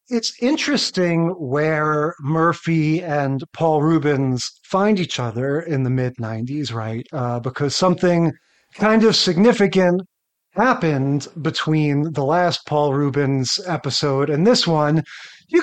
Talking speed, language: 125 wpm, English